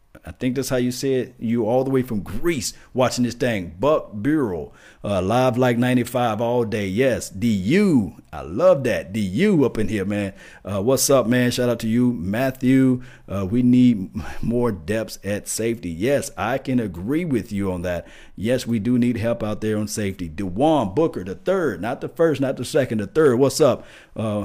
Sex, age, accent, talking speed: male, 50-69, American, 200 wpm